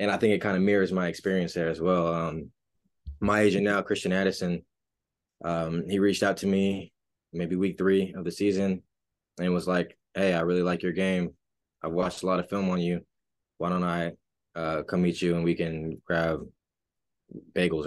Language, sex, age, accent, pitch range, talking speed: English, male, 20-39, American, 85-95 Hz, 200 wpm